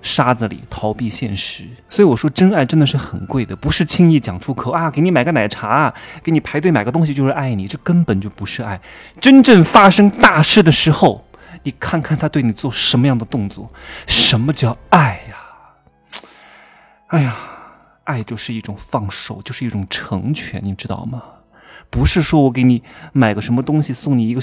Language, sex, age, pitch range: Chinese, male, 20-39, 110-165 Hz